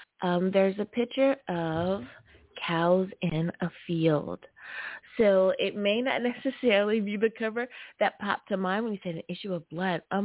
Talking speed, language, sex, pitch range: 170 wpm, English, female, 165-210 Hz